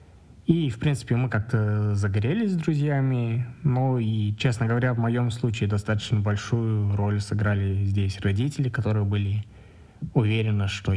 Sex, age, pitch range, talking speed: male, 20-39, 105-125 Hz, 135 wpm